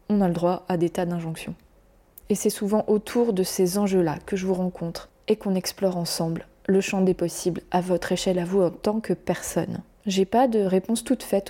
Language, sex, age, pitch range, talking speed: French, female, 20-39, 180-205 Hz, 220 wpm